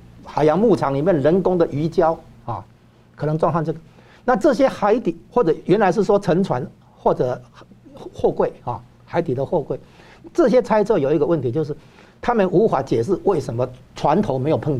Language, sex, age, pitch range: Chinese, male, 60-79, 125-185 Hz